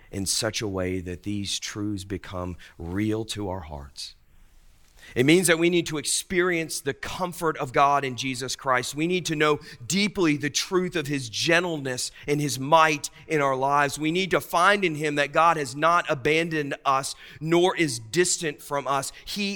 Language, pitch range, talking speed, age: English, 95-140 Hz, 185 wpm, 40-59